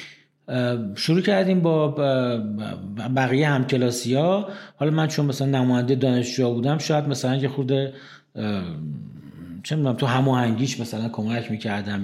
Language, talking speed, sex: Persian, 135 wpm, male